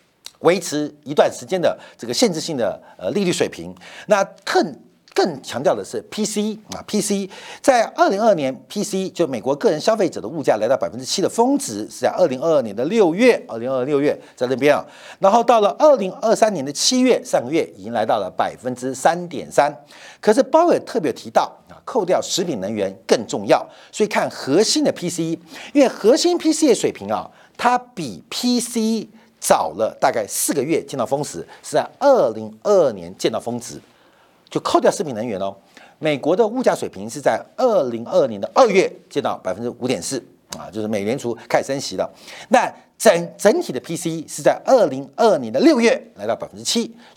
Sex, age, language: male, 50-69, Chinese